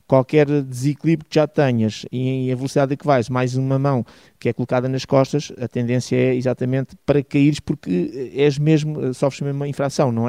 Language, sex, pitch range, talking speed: Portuguese, male, 125-145 Hz, 190 wpm